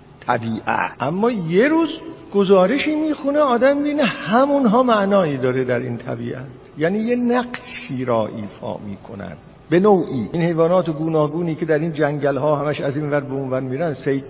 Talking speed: 155 wpm